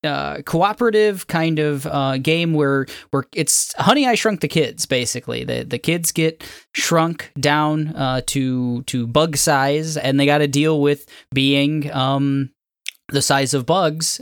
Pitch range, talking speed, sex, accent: 125-160 Hz, 160 wpm, male, American